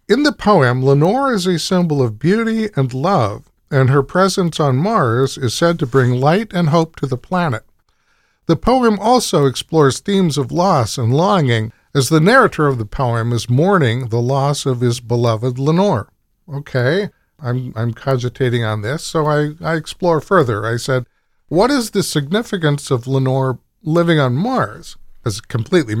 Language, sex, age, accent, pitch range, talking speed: English, male, 50-69, American, 125-180 Hz, 170 wpm